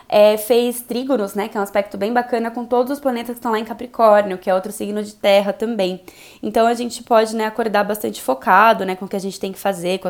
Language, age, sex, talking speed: Portuguese, 20-39, female, 260 wpm